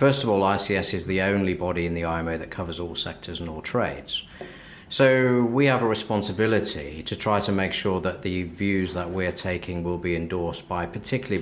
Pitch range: 85-110 Hz